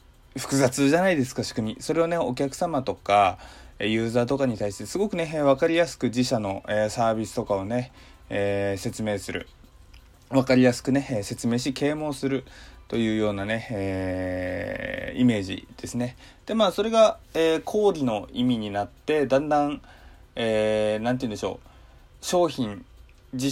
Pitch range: 100-140 Hz